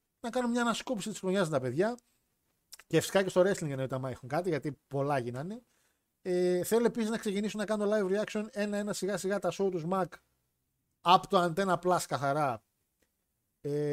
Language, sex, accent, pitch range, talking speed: Greek, male, native, 145-195 Hz, 180 wpm